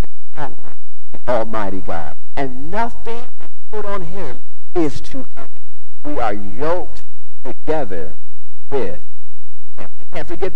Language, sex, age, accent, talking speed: English, male, 50-69, American, 100 wpm